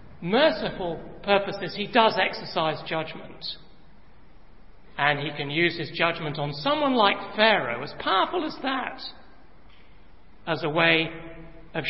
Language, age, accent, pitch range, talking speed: English, 60-79, British, 160-225 Hz, 120 wpm